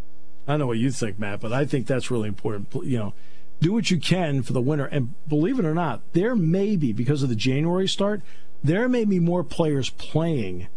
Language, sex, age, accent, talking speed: English, male, 50-69, American, 225 wpm